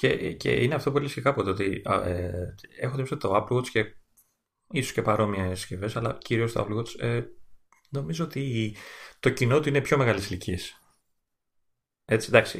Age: 30-49